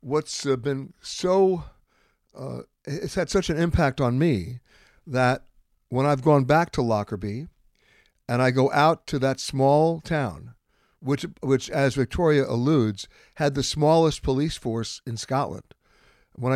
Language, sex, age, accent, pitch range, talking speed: English, male, 60-79, American, 120-145 Hz, 140 wpm